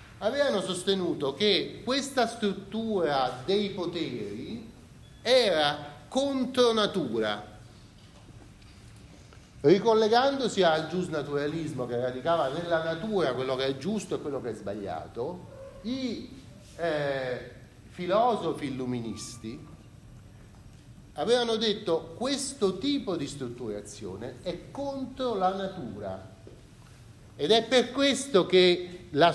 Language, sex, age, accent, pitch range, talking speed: Italian, male, 40-59, native, 125-205 Hz, 90 wpm